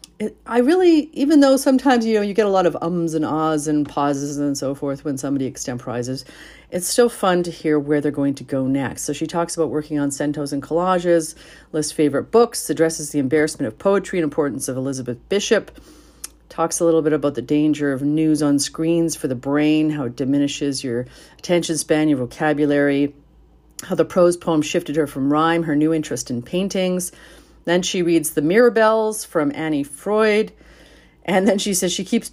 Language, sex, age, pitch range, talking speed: English, female, 40-59, 140-170 Hz, 195 wpm